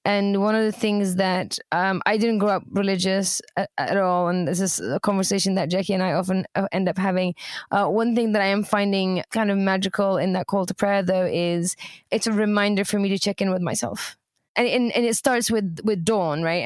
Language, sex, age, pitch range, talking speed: English, female, 20-39, 185-205 Hz, 230 wpm